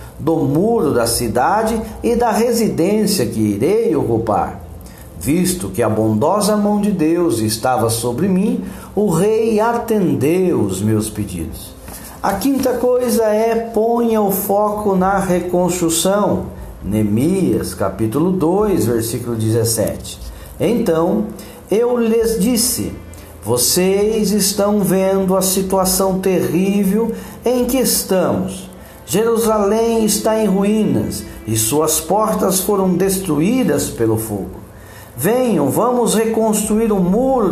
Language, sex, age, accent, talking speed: Portuguese, male, 60-79, Brazilian, 110 wpm